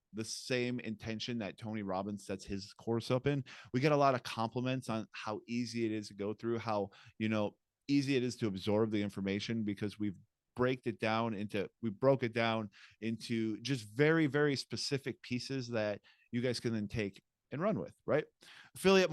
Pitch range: 105-135 Hz